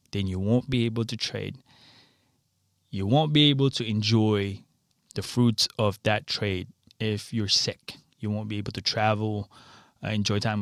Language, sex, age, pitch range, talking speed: English, male, 20-39, 105-130 Hz, 165 wpm